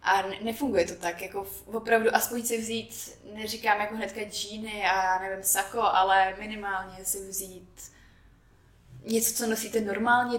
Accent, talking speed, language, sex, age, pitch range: native, 140 wpm, Czech, female, 20-39, 190-225 Hz